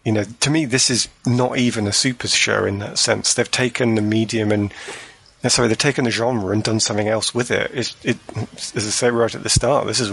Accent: British